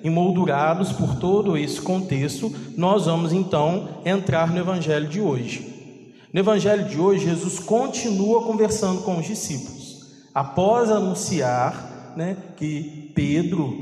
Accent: Brazilian